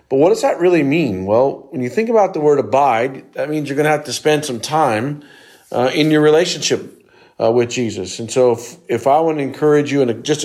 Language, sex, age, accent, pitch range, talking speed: English, male, 50-69, American, 120-155 Hz, 240 wpm